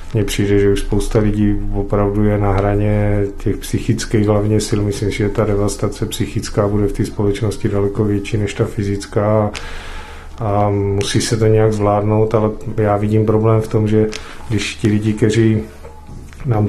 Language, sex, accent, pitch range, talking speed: Czech, male, native, 100-110 Hz, 165 wpm